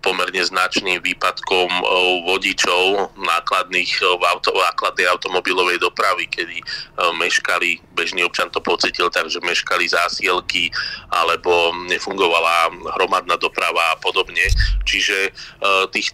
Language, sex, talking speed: Slovak, male, 100 wpm